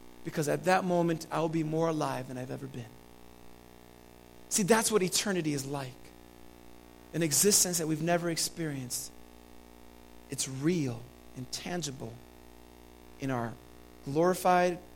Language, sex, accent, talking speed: English, male, American, 130 wpm